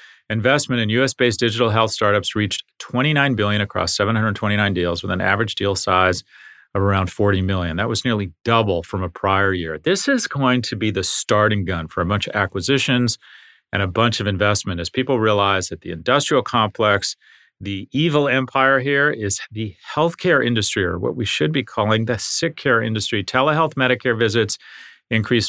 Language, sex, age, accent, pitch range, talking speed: English, male, 40-59, American, 100-130 Hz, 180 wpm